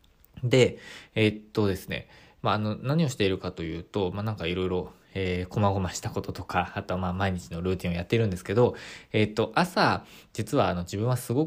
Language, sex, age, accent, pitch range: Japanese, male, 20-39, native, 90-120 Hz